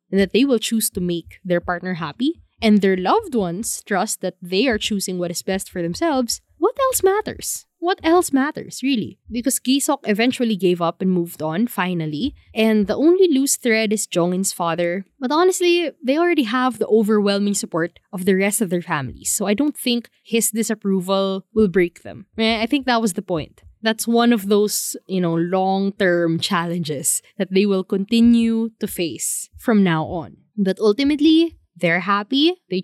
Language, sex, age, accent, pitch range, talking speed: English, female, 20-39, Filipino, 190-260 Hz, 180 wpm